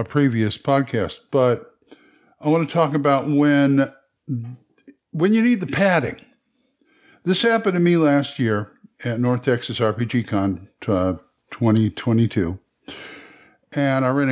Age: 50-69